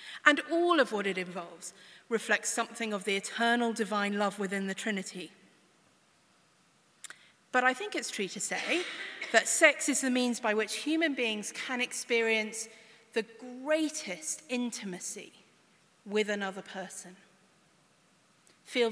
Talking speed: 130 wpm